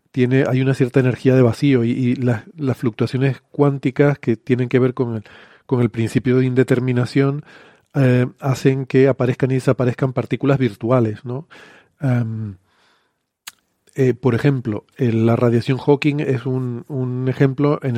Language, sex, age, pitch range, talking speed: Spanish, male, 40-59, 120-140 Hz, 155 wpm